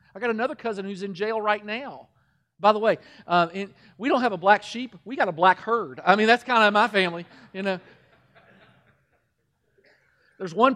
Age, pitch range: 40-59, 170-230 Hz